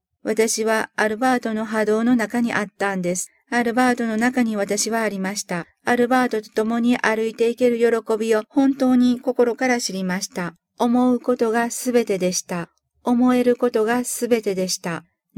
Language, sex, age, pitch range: Japanese, female, 50-69, 200-240 Hz